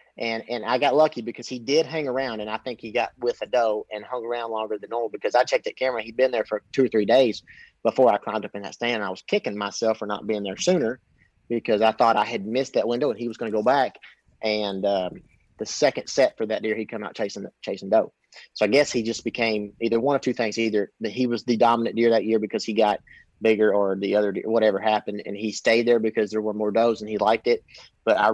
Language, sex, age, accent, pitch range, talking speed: English, male, 30-49, American, 105-125 Hz, 270 wpm